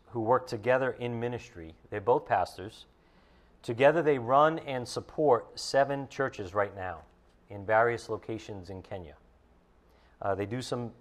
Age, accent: 40-59, American